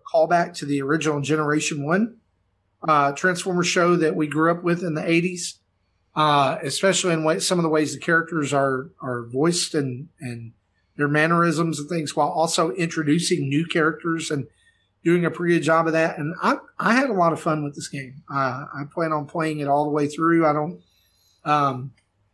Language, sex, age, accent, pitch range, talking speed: English, male, 40-59, American, 140-175 Hz, 195 wpm